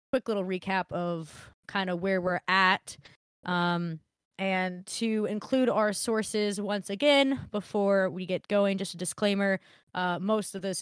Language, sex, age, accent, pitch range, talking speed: English, female, 20-39, American, 180-210 Hz, 155 wpm